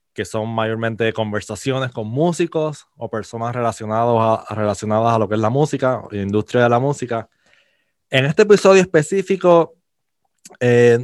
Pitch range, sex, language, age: 110-130 Hz, male, Spanish, 20-39